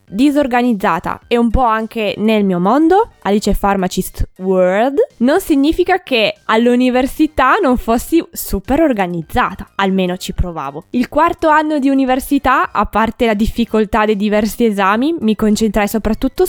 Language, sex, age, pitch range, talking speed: Italian, female, 20-39, 200-255 Hz, 135 wpm